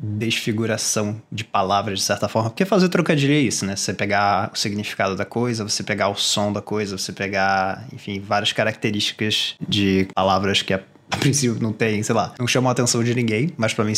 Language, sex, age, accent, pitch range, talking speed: Portuguese, male, 20-39, Brazilian, 105-125 Hz, 200 wpm